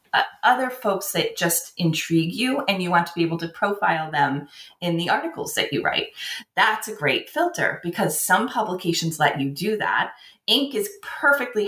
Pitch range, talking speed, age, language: 165-220 Hz, 185 wpm, 30-49, English